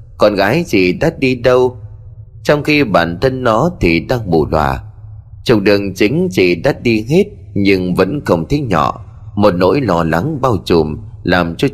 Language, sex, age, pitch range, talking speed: Vietnamese, male, 30-49, 90-130 Hz, 180 wpm